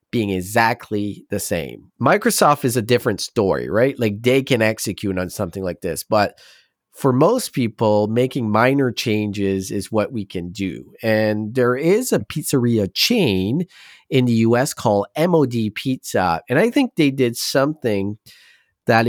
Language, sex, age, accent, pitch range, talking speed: English, male, 30-49, American, 100-135 Hz, 155 wpm